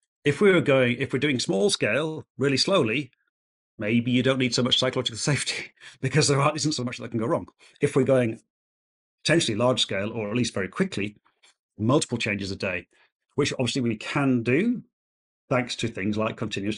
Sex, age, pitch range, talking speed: male, 40-59, 110-140 Hz, 190 wpm